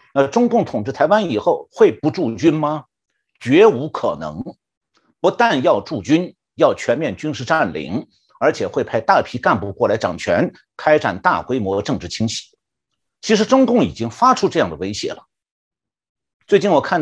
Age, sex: 50-69, male